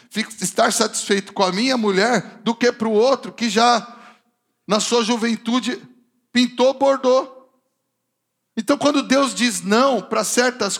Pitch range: 230-260 Hz